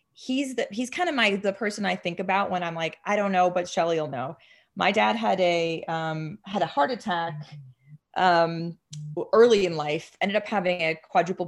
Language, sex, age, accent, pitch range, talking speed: English, female, 30-49, American, 170-205 Hz, 200 wpm